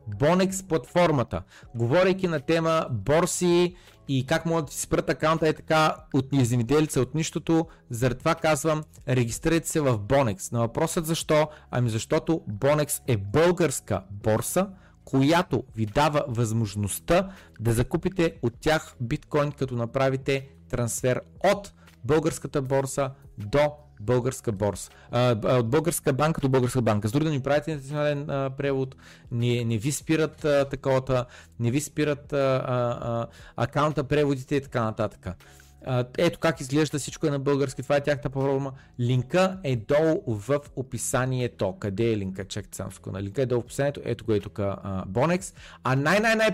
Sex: male